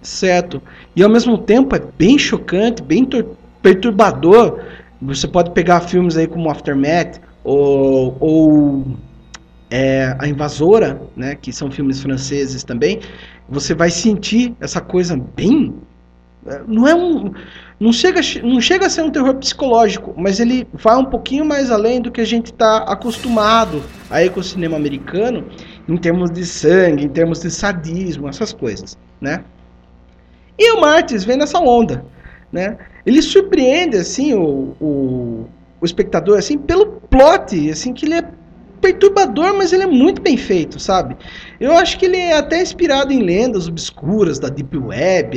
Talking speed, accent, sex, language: 155 wpm, Brazilian, male, Portuguese